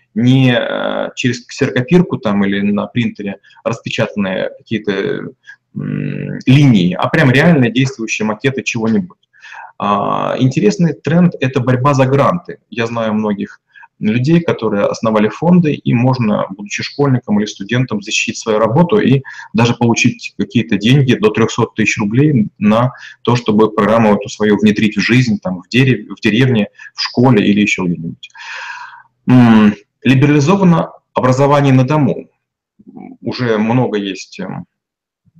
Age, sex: 20-39, male